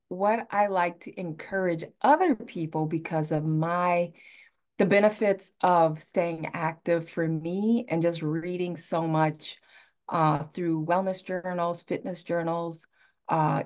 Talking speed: 125 wpm